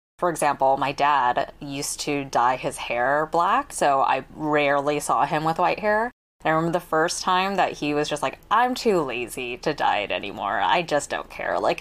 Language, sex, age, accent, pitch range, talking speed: English, female, 20-39, American, 145-190 Hz, 210 wpm